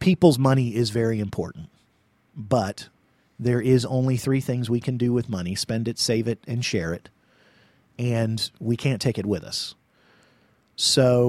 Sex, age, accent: male, 40-59, American